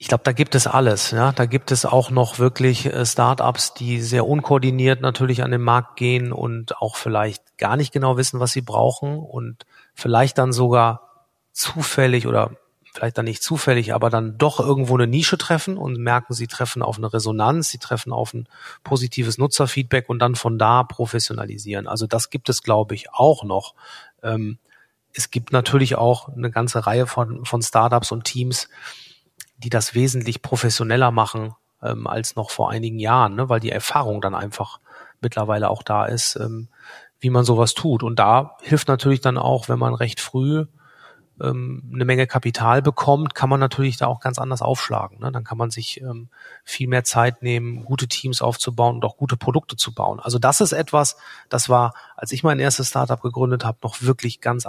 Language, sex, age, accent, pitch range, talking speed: German, male, 40-59, German, 115-130 Hz, 185 wpm